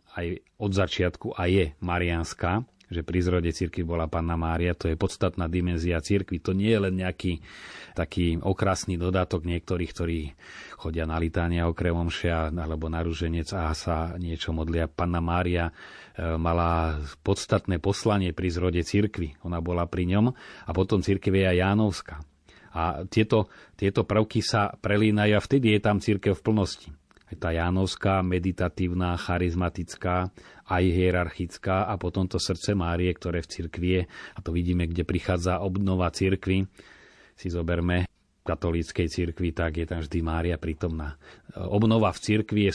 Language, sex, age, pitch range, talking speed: Slovak, male, 30-49, 85-95 Hz, 145 wpm